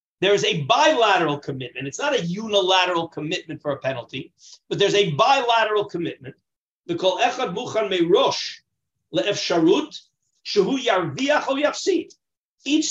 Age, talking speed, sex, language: 50-69, 90 wpm, male, English